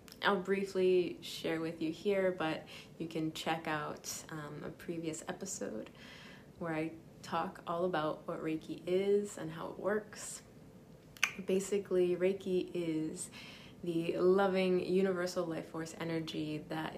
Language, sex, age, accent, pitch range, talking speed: English, female, 20-39, American, 155-180 Hz, 130 wpm